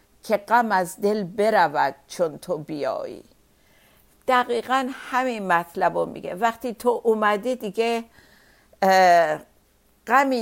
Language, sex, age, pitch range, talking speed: Persian, female, 50-69, 175-220 Hz, 105 wpm